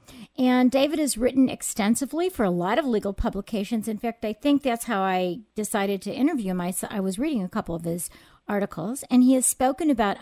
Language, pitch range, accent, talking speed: English, 200-260 Hz, American, 205 wpm